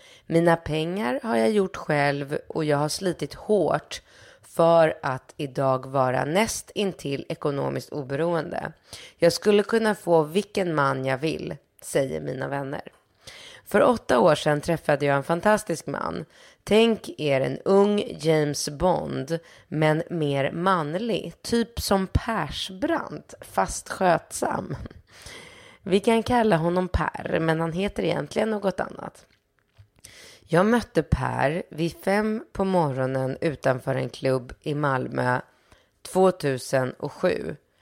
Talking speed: 120 wpm